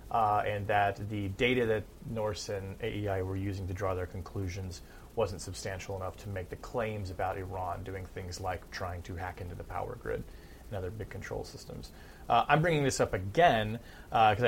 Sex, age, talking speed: male, 30-49, 195 wpm